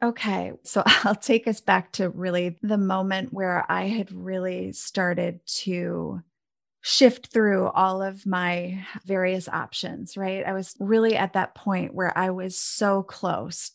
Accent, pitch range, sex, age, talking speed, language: American, 185-215 Hz, female, 30-49, 155 wpm, English